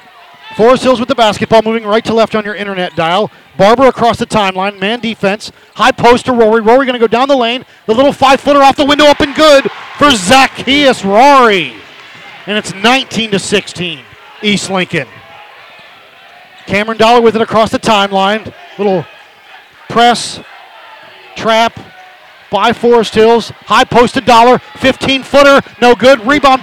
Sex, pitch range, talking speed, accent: male, 215-265 Hz, 155 wpm, American